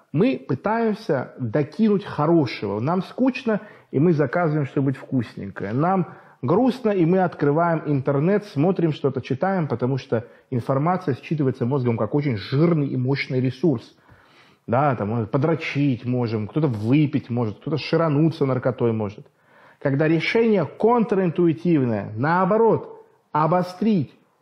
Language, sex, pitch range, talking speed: Russian, male, 125-185 Hz, 115 wpm